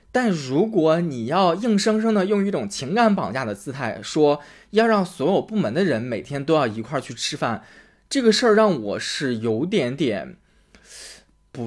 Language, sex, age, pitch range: Chinese, male, 20-39, 115-195 Hz